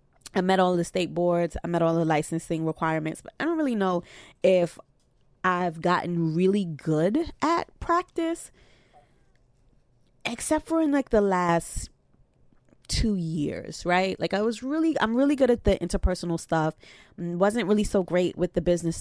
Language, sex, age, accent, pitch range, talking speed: English, female, 20-39, American, 160-200 Hz, 160 wpm